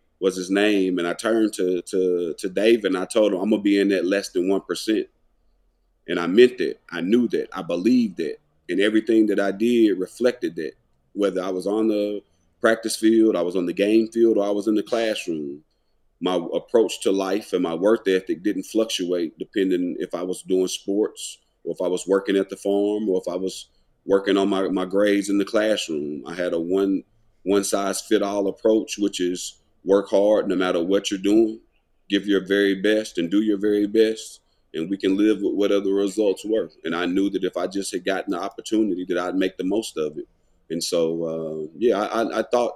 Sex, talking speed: male, 215 wpm